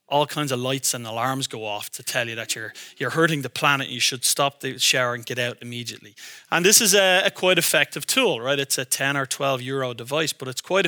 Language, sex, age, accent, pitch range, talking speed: Dutch, male, 30-49, Irish, 135-170 Hz, 255 wpm